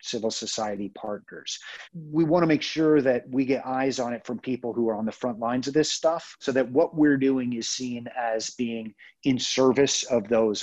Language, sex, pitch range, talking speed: English, male, 105-135 Hz, 215 wpm